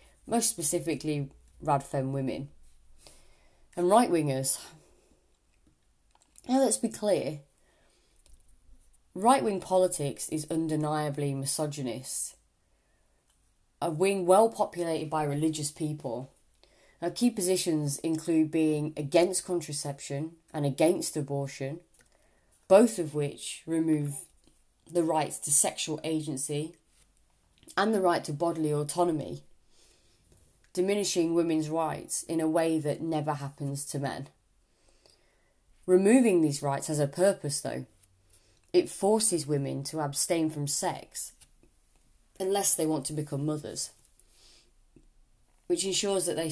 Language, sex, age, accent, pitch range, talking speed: English, female, 30-49, British, 140-175 Hz, 105 wpm